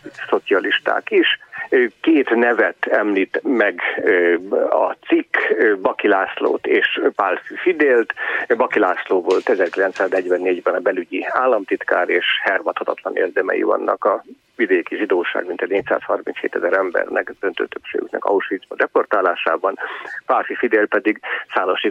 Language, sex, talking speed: Hungarian, male, 110 wpm